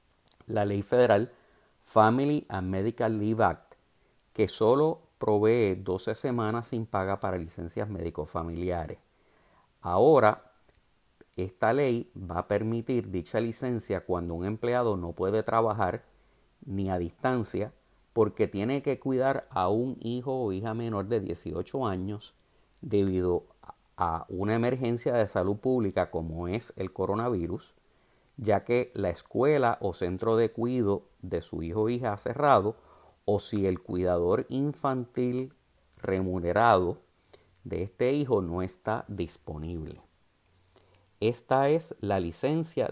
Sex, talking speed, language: male, 125 wpm, English